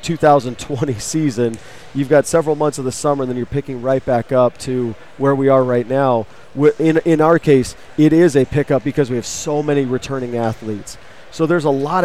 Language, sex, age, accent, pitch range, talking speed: English, male, 40-59, American, 125-150 Hz, 205 wpm